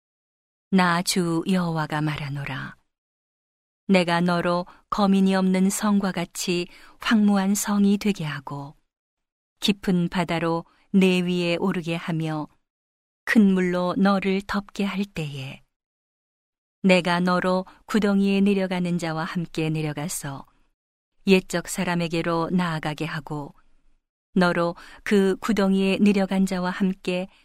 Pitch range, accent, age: 165-195 Hz, native, 40-59